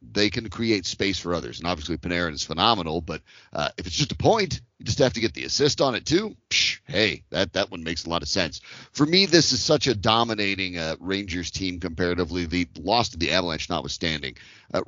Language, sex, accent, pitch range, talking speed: English, male, American, 90-120 Hz, 220 wpm